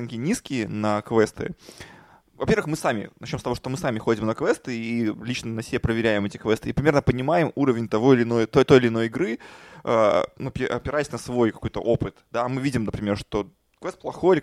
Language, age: Russian, 20-39